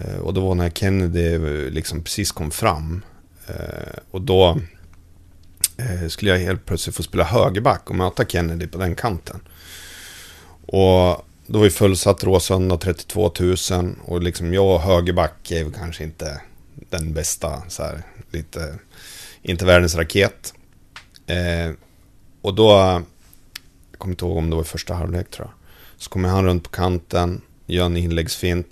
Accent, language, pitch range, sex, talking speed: native, Swedish, 85-95 Hz, male, 150 wpm